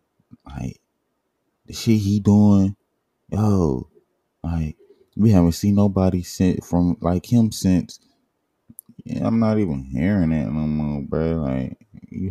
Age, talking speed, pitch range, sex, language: 20-39, 130 wpm, 65-90 Hz, male, English